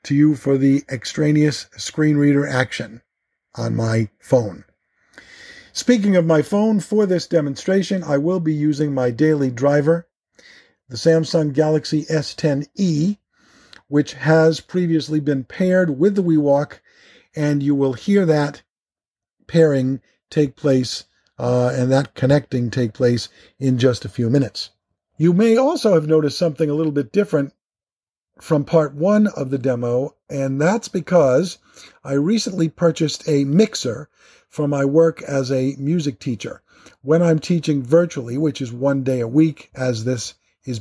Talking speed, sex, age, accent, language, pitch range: 145 wpm, male, 50-69, American, English, 130-160 Hz